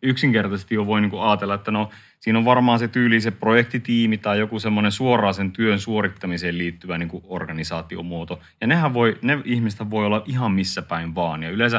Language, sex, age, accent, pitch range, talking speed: Finnish, male, 30-49, native, 100-115 Hz, 190 wpm